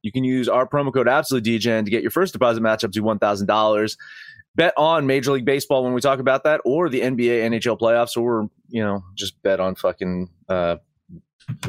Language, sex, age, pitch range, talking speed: English, male, 30-49, 120-170 Hz, 195 wpm